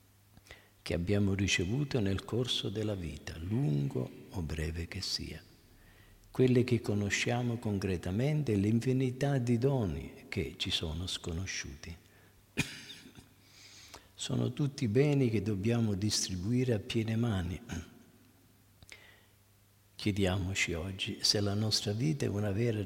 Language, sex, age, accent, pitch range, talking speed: Italian, male, 50-69, native, 95-115 Hz, 110 wpm